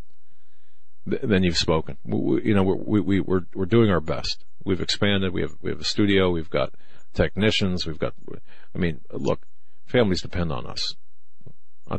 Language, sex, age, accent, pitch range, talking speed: English, male, 40-59, American, 80-100 Hz, 175 wpm